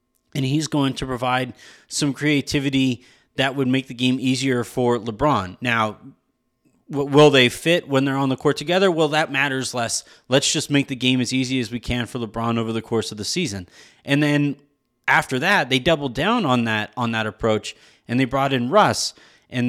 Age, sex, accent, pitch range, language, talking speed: 30-49, male, American, 120-145 Hz, English, 200 wpm